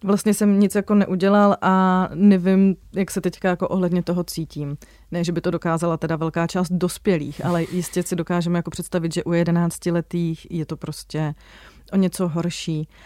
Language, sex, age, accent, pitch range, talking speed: Czech, female, 30-49, native, 170-210 Hz, 175 wpm